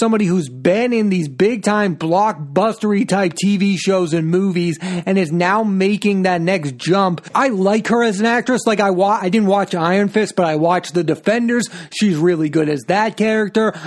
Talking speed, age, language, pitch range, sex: 195 wpm, 30-49, English, 180-220 Hz, male